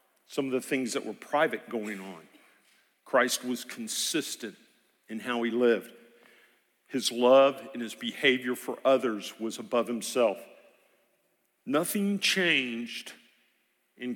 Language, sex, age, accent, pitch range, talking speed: English, male, 50-69, American, 120-195 Hz, 125 wpm